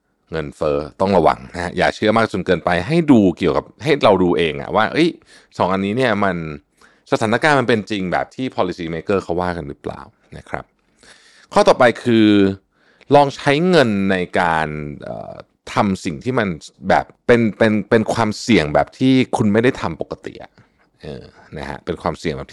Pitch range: 85-120 Hz